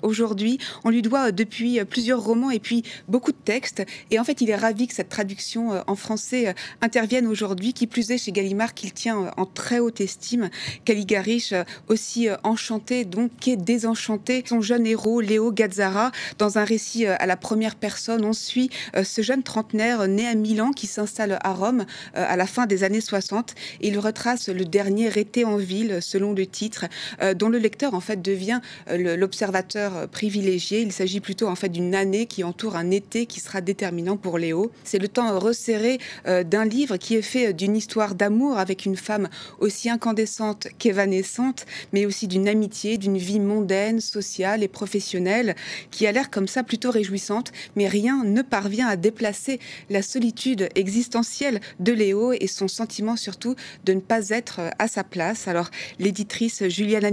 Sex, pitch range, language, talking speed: female, 195-230 Hz, French, 175 wpm